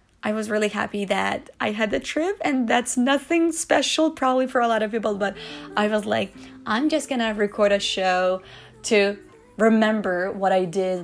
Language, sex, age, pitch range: Chinese, female, 20-39, 200-260 Hz